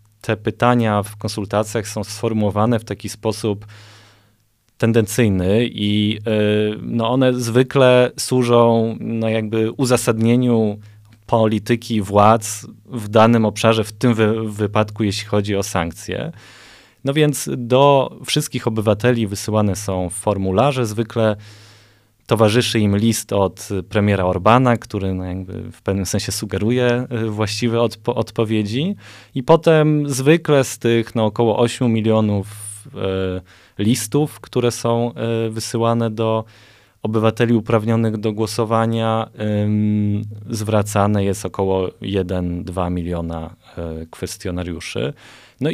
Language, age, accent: Polish, 20-39, native